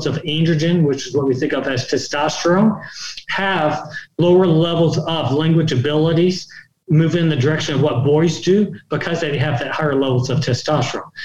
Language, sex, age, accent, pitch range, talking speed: English, male, 40-59, American, 145-165 Hz, 170 wpm